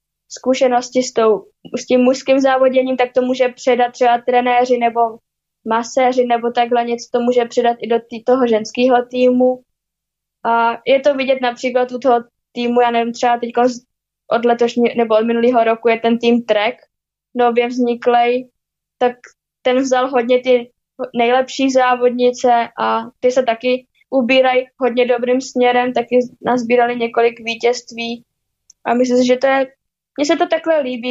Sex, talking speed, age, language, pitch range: female, 160 wpm, 20-39, Slovak, 235-255 Hz